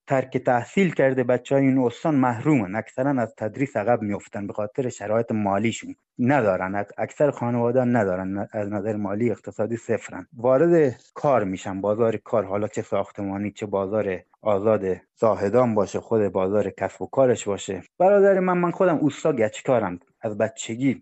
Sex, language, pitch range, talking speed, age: male, Persian, 110-145 Hz, 155 wpm, 30-49